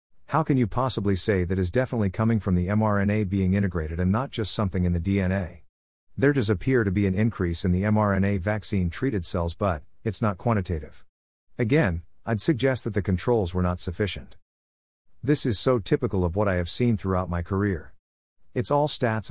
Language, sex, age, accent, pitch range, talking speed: English, male, 50-69, American, 90-115 Hz, 190 wpm